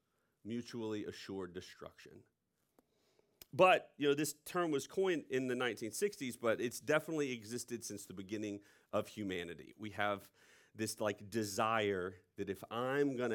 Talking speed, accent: 140 wpm, American